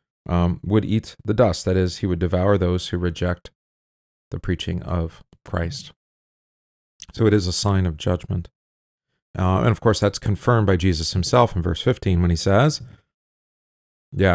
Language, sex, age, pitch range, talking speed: English, male, 40-59, 85-100 Hz, 165 wpm